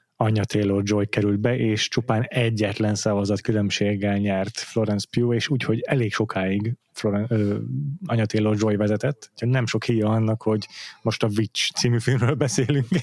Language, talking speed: Hungarian, 160 wpm